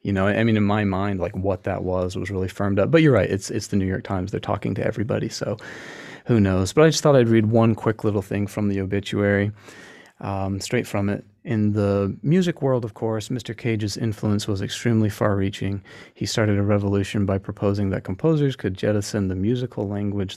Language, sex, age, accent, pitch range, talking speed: English, male, 30-49, American, 100-115 Hz, 215 wpm